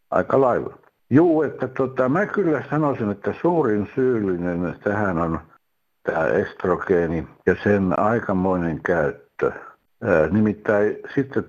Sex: male